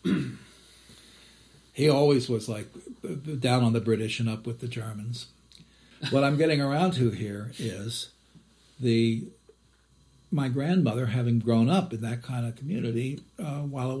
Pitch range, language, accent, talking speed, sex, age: 115-135 Hz, English, American, 145 wpm, male, 60-79